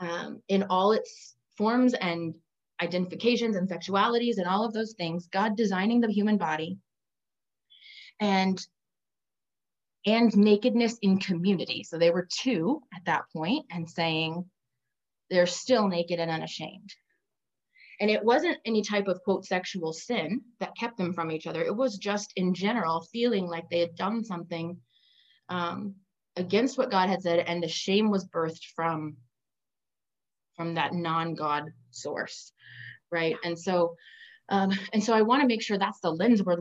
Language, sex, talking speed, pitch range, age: English, female, 155 wpm, 165-210 Hz, 20-39